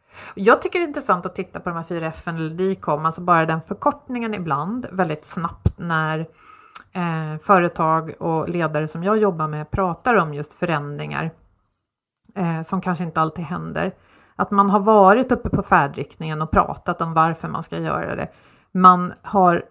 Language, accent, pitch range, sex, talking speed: Swedish, native, 160-195 Hz, female, 160 wpm